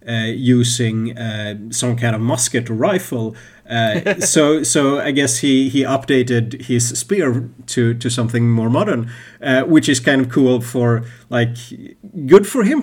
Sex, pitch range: male, 120-140 Hz